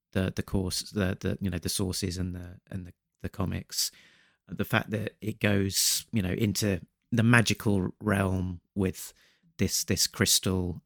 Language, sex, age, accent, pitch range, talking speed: English, male, 30-49, British, 90-105 Hz, 165 wpm